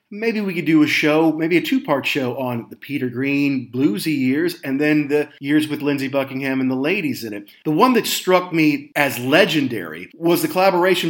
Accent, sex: American, male